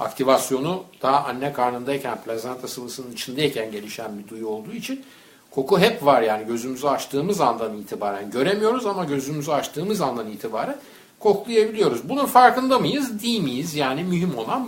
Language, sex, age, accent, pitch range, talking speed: Turkish, male, 60-79, native, 125-210 Hz, 145 wpm